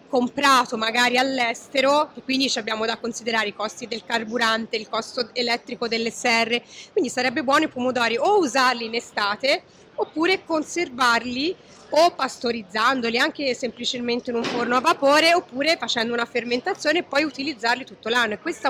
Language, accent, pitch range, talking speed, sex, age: Italian, native, 225-275 Hz, 155 wpm, female, 30-49